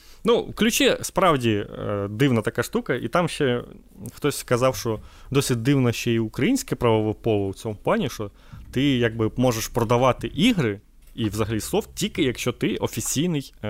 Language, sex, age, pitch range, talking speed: Ukrainian, male, 20-39, 110-140 Hz, 155 wpm